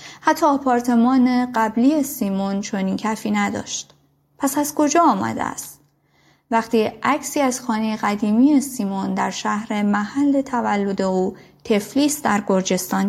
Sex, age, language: female, 30-49, Persian